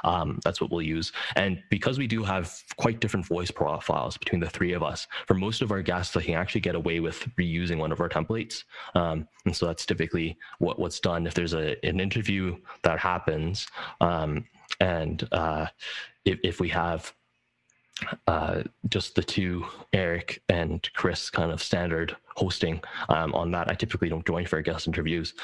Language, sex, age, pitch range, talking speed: English, male, 20-39, 80-95 Hz, 185 wpm